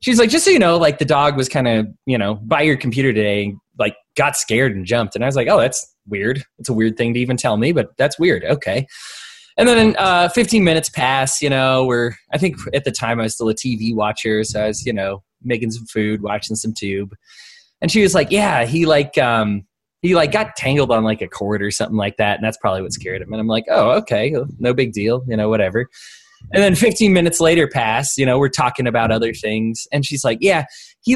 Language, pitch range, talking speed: English, 115-185 Hz, 245 wpm